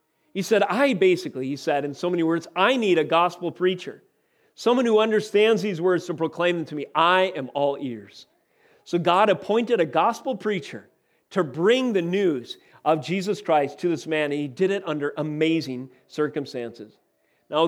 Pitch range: 155-210 Hz